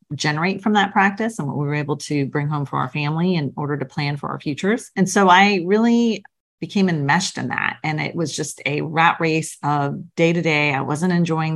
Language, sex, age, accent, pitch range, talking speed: English, female, 40-59, American, 150-190 Hz, 230 wpm